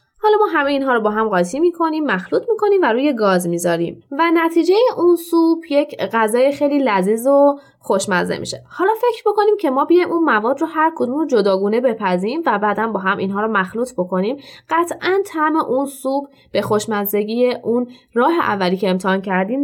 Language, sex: Persian, female